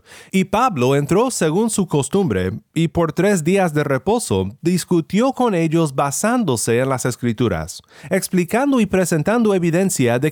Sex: male